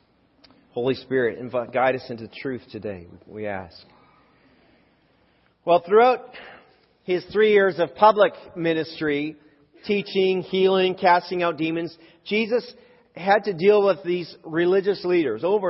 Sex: male